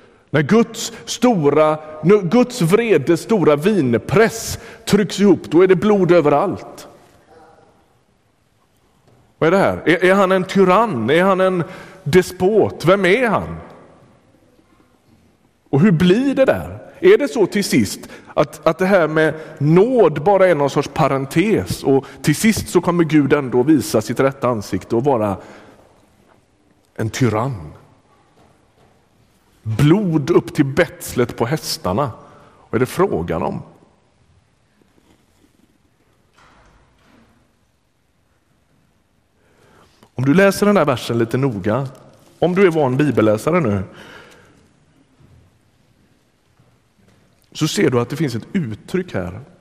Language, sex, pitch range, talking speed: Swedish, male, 115-185 Hz, 120 wpm